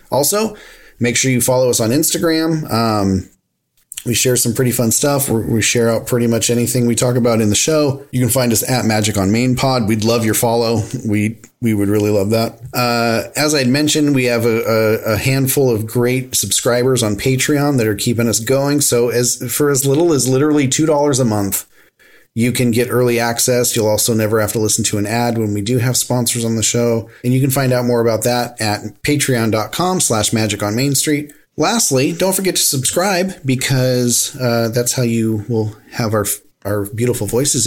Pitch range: 110-135 Hz